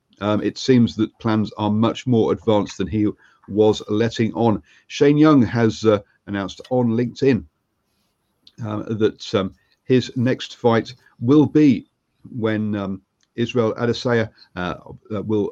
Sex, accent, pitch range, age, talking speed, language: male, British, 105-125 Hz, 50-69, 135 wpm, English